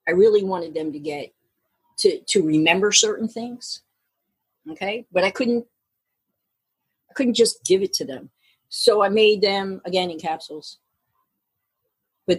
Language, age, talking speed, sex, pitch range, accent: English, 50-69, 145 wpm, female, 170-260 Hz, American